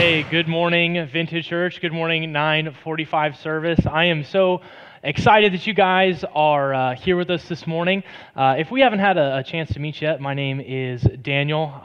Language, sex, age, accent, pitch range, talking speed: English, male, 20-39, American, 135-165 Hz, 190 wpm